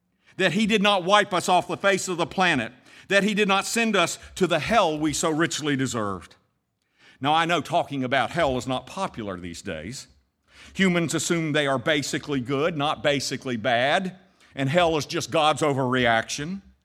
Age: 50-69